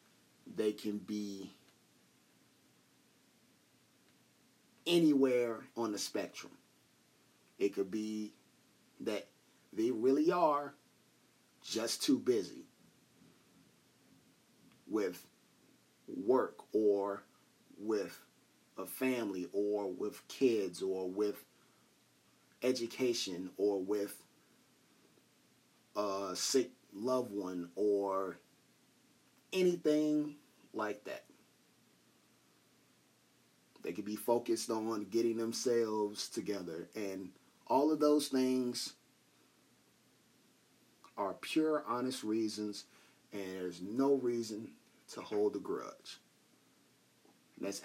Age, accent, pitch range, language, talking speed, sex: 30-49, American, 100-140 Hz, English, 80 wpm, male